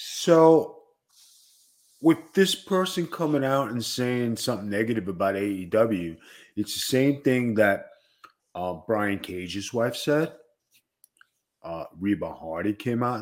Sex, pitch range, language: male, 105-145 Hz, English